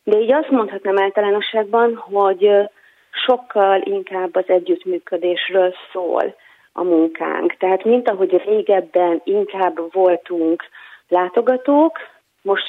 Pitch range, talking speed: 170-210 Hz, 100 wpm